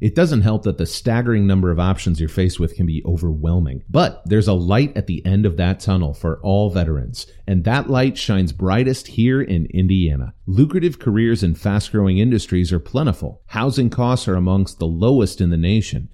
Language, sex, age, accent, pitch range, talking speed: English, male, 30-49, American, 90-120 Hz, 195 wpm